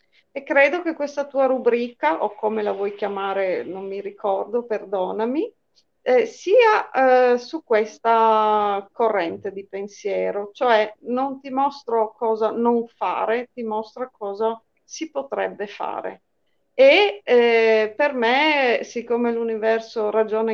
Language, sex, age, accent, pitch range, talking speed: Italian, female, 40-59, native, 205-245 Hz, 125 wpm